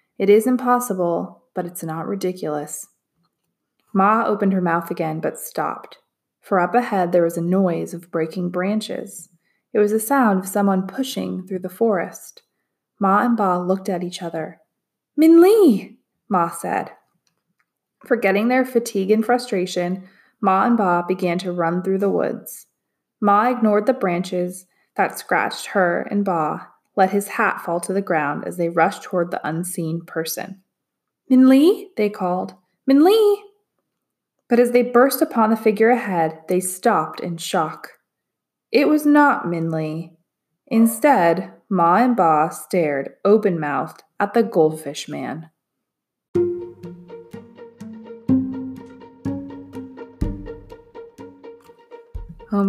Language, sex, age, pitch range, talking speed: English, female, 20-39, 175-235 Hz, 130 wpm